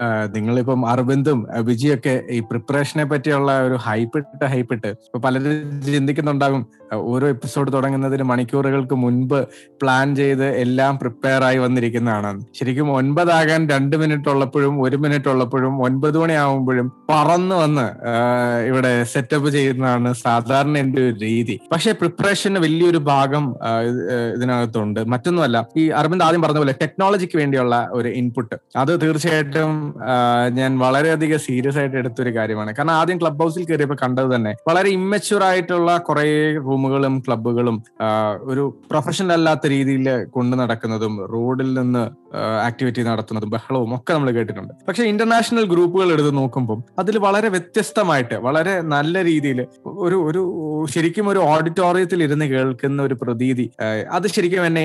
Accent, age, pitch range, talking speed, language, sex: native, 20-39, 125-155 Hz, 125 wpm, Malayalam, male